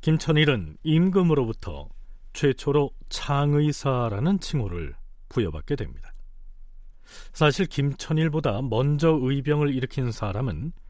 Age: 40-59